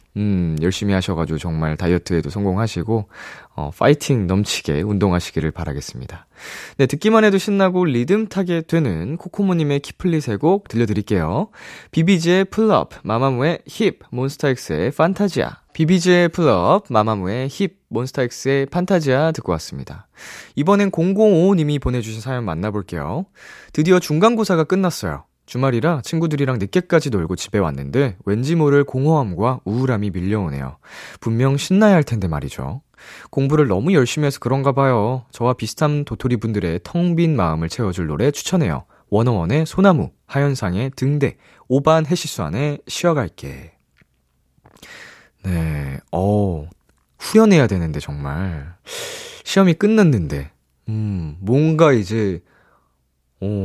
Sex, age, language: male, 20-39, Korean